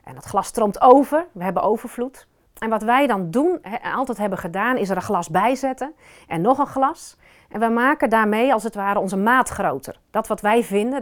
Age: 40-59